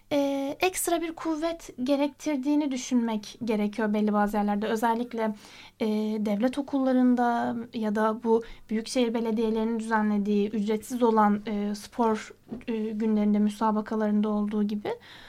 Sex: female